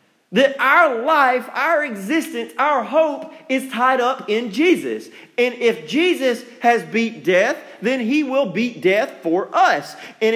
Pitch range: 215-290 Hz